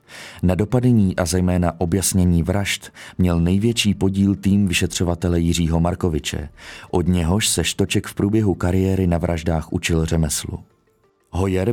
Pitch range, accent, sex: 85-100 Hz, native, male